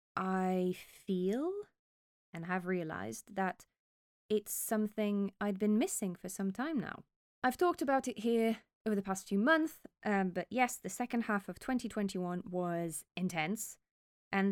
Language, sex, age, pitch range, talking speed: English, female, 20-39, 180-230 Hz, 150 wpm